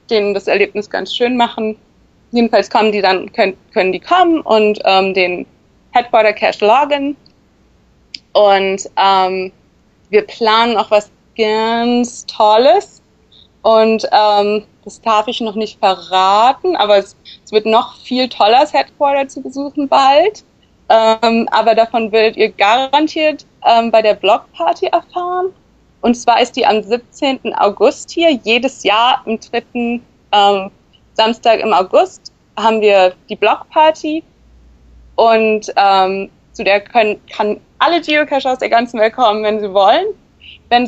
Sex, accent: female, German